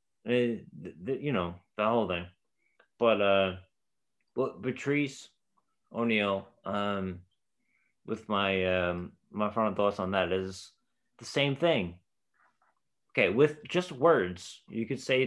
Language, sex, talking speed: English, male, 115 wpm